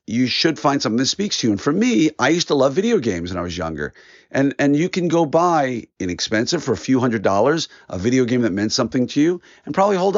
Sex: male